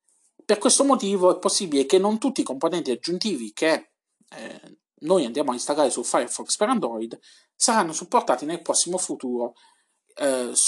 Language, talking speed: Italian, 150 wpm